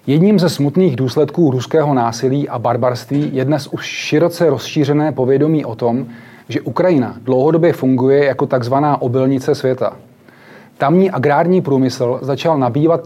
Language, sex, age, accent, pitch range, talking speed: Czech, male, 30-49, native, 125-155 Hz, 135 wpm